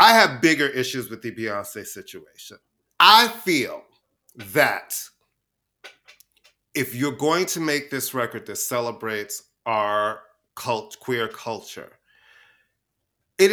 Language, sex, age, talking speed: English, male, 30-49, 110 wpm